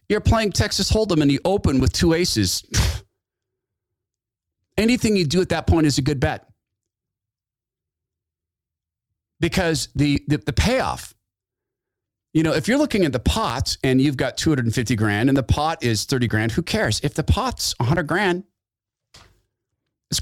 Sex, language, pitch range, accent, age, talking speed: male, English, 95-135 Hz, American, 40-59, 155 wpm